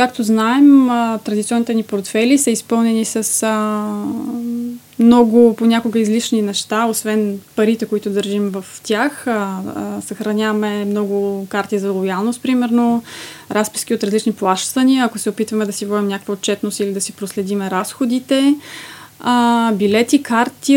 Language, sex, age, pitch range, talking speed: Bulgarian, female, 20-39, 210-235 Hz, 125 wpm